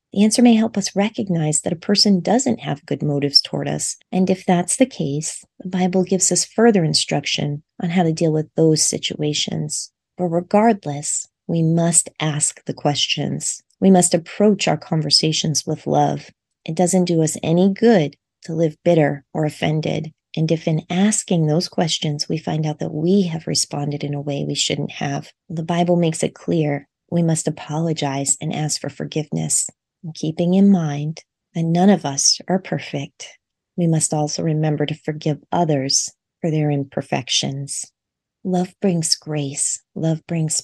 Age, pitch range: 30-49, 150-185 Hz